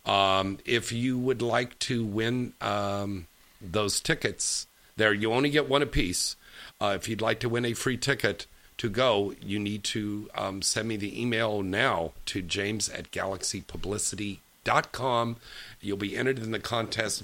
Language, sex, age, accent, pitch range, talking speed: English, male, 50-69, American, 105-135 Hz, 160 wpm